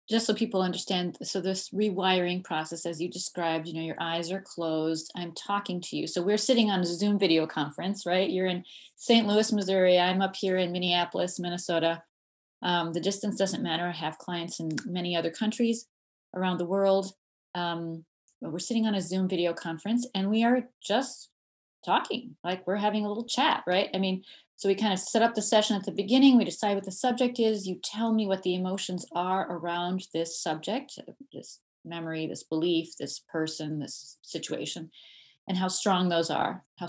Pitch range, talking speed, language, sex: 175-220 Hz, 195 wpm, English, female